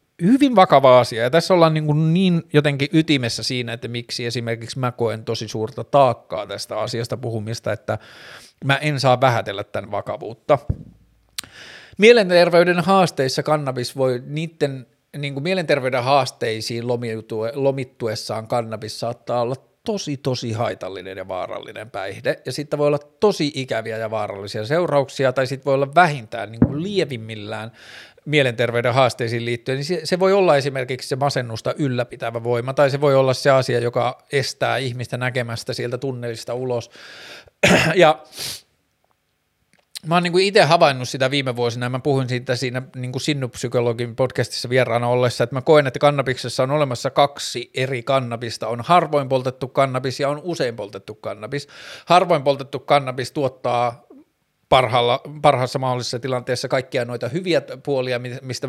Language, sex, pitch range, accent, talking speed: Finnish, male, 120-145 Hz, native, 145 wpm